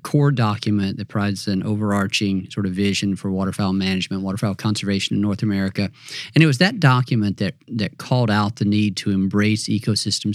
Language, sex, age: English, male, 50-69